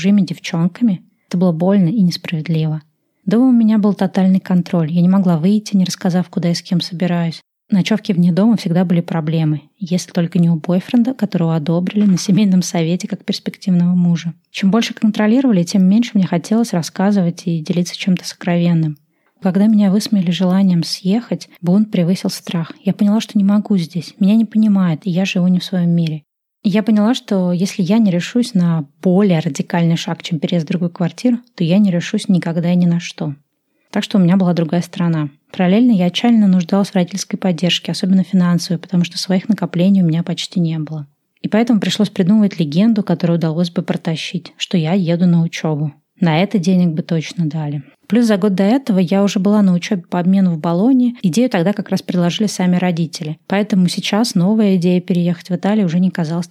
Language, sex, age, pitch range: Russian, female, 20-39, 170-205 Hz